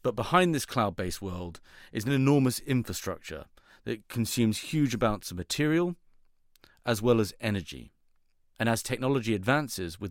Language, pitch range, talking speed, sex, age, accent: English, 95-130 Hz, 140 wpm, male, 40-59, British